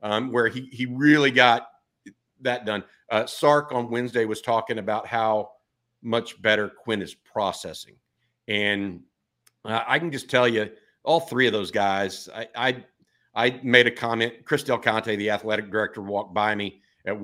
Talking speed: 170 wpm